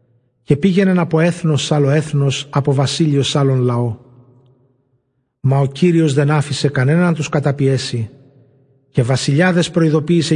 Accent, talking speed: native, 140 wpm